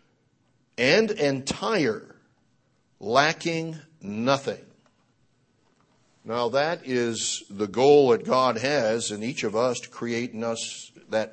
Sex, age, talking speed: male, 60-79, 110 wpm